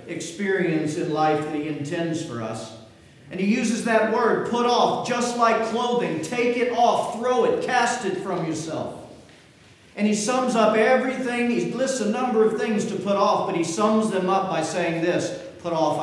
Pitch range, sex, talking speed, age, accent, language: 155-210 Hz, male, 190 wpm, 50-69, American, English